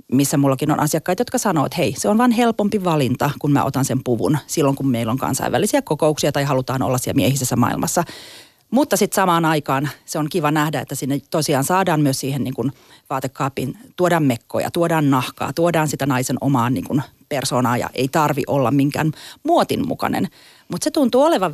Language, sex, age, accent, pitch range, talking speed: Finnish, female, 30-49, native, 140-185 Hz, 190 wpm